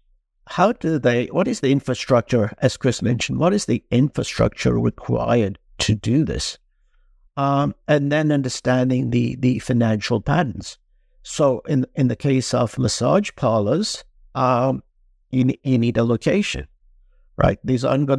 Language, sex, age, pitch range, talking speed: English, male, 60-79, 115-135 Hz, 145 wpm